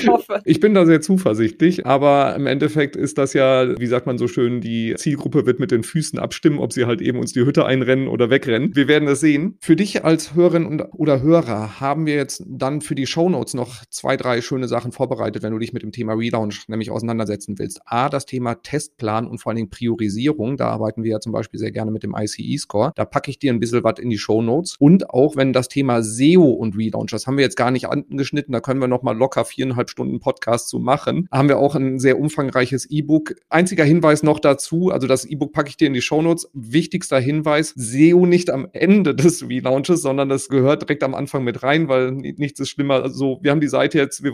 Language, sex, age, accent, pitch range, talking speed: German, male, 40-59, German, 125-160 Hz, 235 wpm